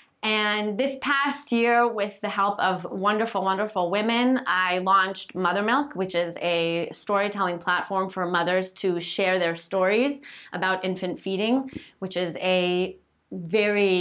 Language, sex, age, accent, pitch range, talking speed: English, female, 20-39, American, 180-225 Hz, 140 wpm